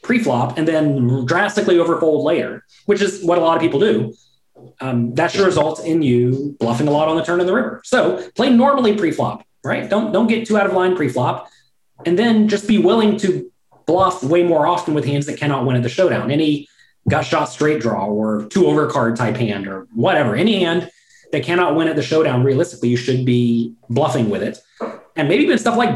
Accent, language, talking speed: American, English, 215 wpm